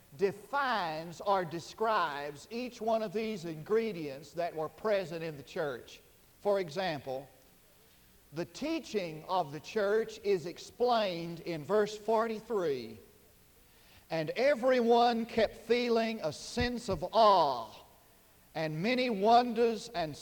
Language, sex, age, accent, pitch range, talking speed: English, male, 50-69, American, 165-225 Hz, 115 wpm